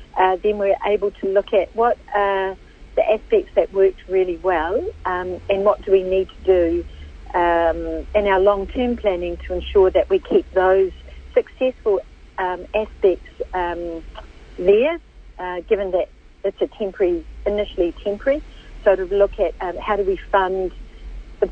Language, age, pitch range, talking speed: English, 50-69, 185-215 Hz, 165 wpm